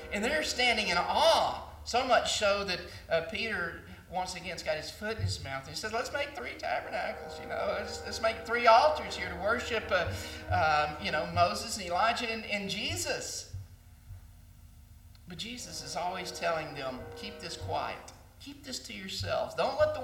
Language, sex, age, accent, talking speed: English, male, 50-69, American, 185 wpm